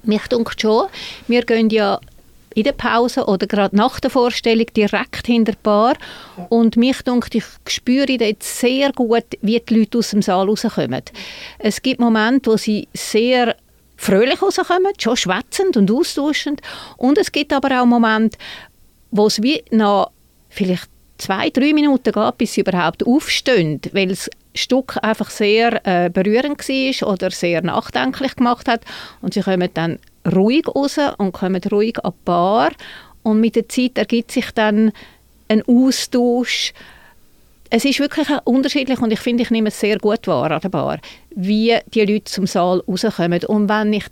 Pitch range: 205-255 Hz